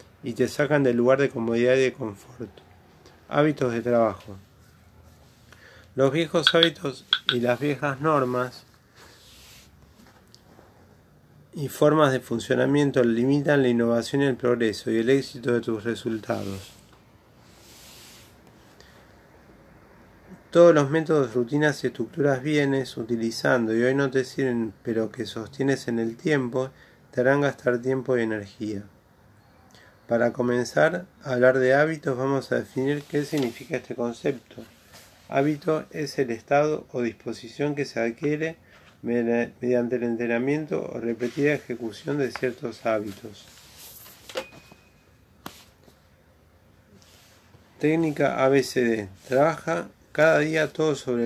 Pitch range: 115-140 Hz